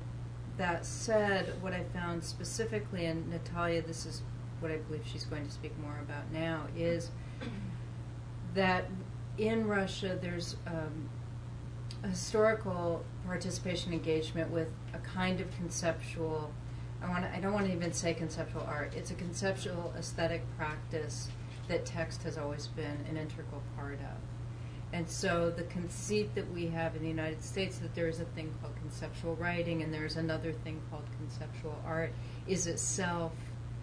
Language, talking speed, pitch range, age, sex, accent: English, 155 wpm, 120-160 Hz, 40-59, female, American